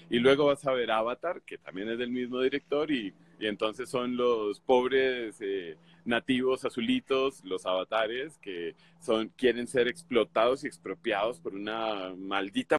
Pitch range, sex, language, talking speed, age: 110-150 Hz, male, Spanish, 155 wpm, 30-49